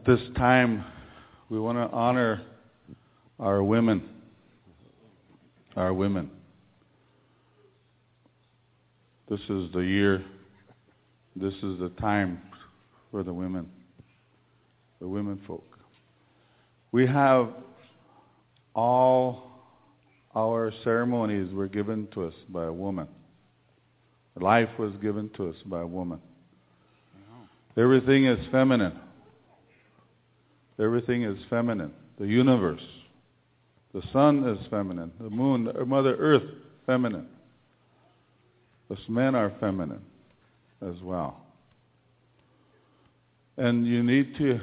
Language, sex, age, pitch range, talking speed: English, male, 50-69, 95-125 Hz, 95 wpm